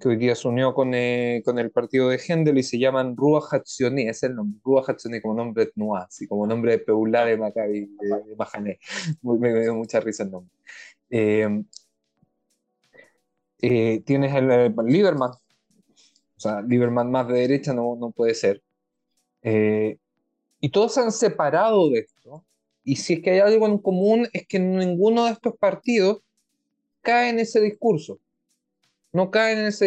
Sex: male